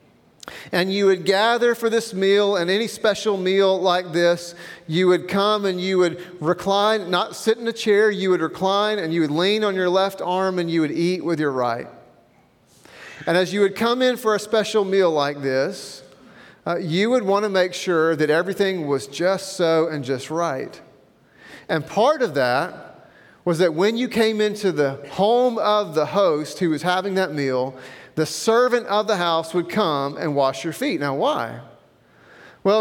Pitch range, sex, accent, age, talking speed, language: 165-200 Hz, male, American, 40-59, 190 wpm, English